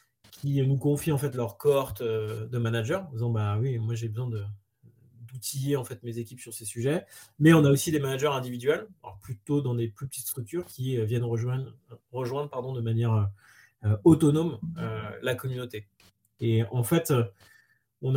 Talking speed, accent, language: 180 wpm, French, English